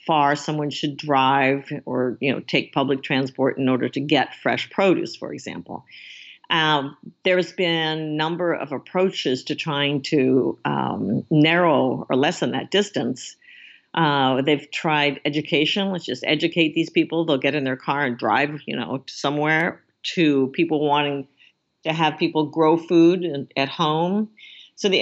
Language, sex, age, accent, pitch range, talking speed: English, female, 50-69, American, 140-175 Hz, 160 wpm